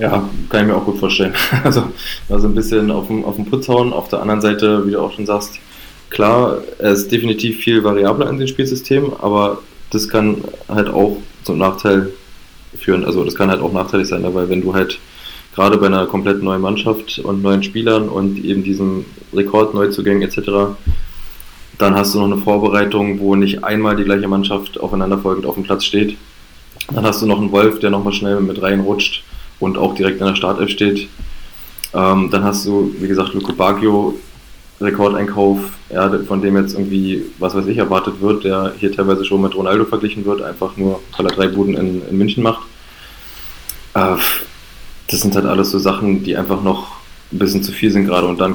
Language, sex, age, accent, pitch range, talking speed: German, male, 20-39, German, 95-105 Hz, 190 wpm